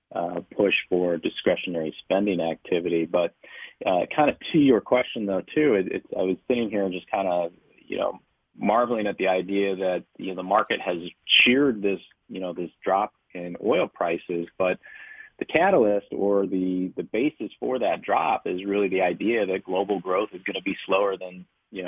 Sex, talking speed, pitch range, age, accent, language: male, 190 wpm, 90-100 Hz, 30-49, American, English